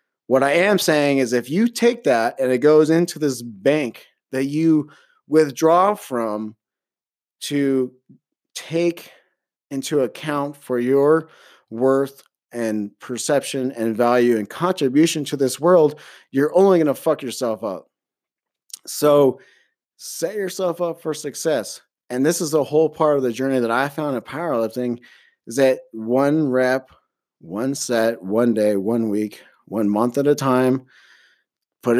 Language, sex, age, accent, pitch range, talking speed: English, male, 30-49, American, 120-155 Hz, 150 wpm